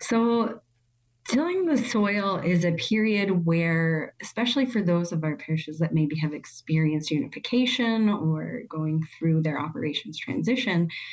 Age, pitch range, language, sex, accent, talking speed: 30-49, 160-215 Hz, English, female, American, 135 wpm